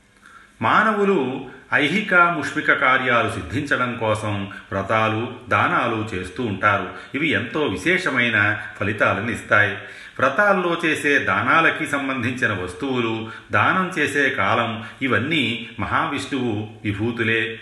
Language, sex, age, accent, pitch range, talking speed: Telugu, male, 40-59, native, 105-120 Hz, 85 wpm